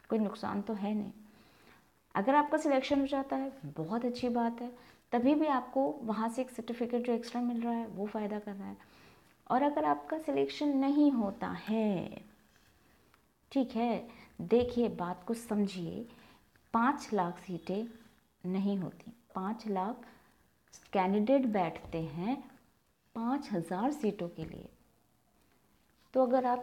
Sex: female